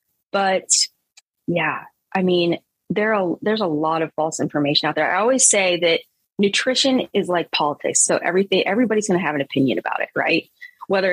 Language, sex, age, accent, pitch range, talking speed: English, female, 20-39, American, 160-205 Hz, 180 wpm